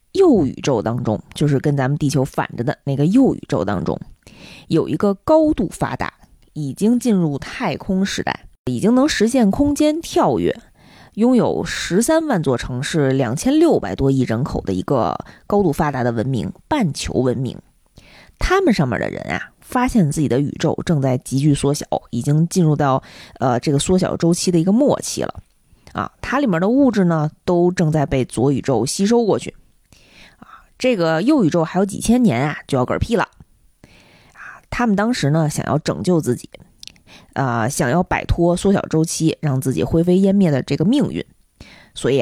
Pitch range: 140-225 Hz